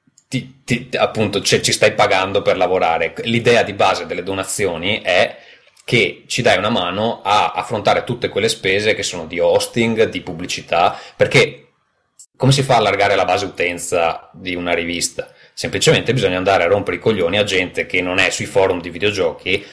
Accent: native